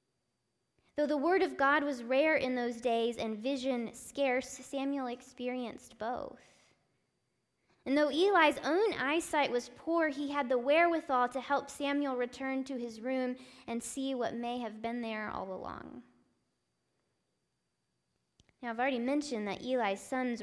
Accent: American